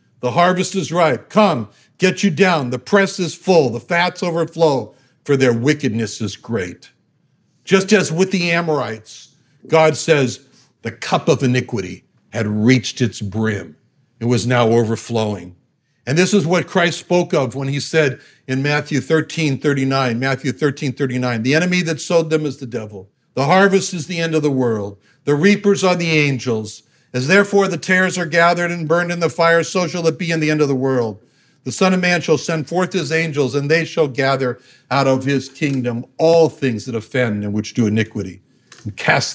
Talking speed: 190 wpm